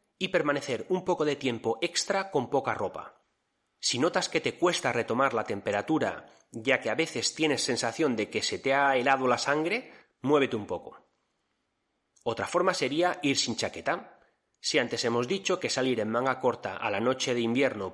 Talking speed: 185 wpm